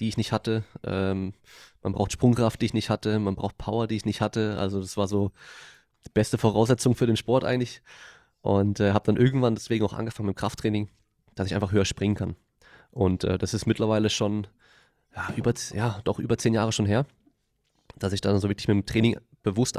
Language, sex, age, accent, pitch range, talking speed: German, male, 20-39, German, 100-120 Hz, 215 wpm